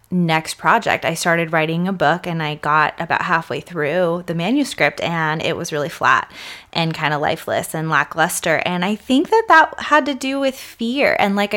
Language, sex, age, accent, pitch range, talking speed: English, female, 20-39, American, 175-220 Hz, 195 wpm